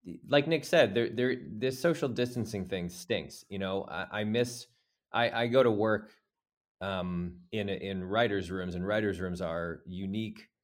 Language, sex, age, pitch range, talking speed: English, male, 20-39, 90-110 Hz, 170 wpm